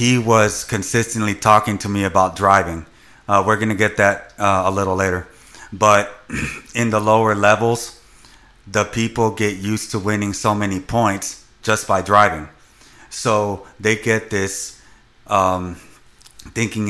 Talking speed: 145 wpm